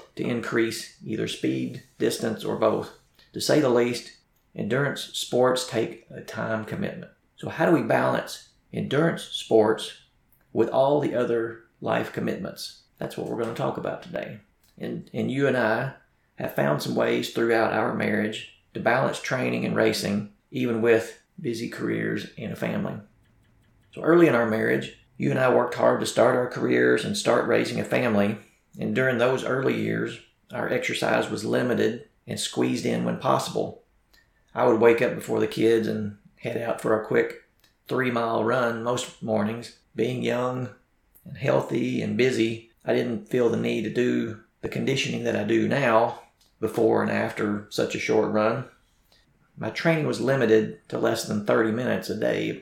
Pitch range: 110-125 Hz